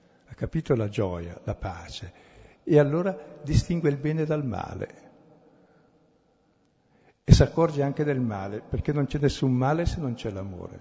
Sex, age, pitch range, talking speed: male, 60-79, 110-140 Hz, 155 wpm